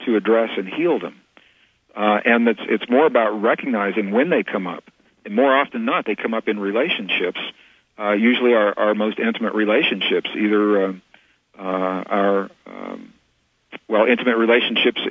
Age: 50-69